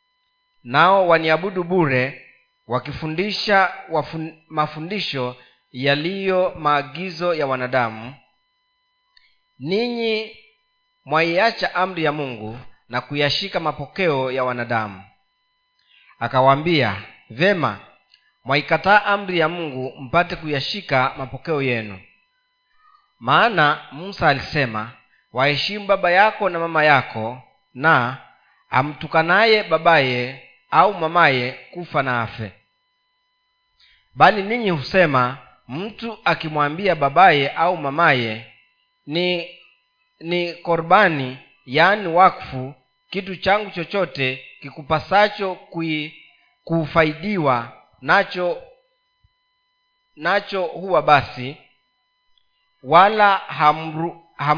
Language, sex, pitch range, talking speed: Swahili, male, 135-205 Hz, 80 wpm